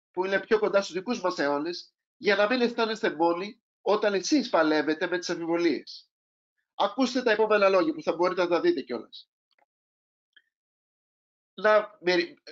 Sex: male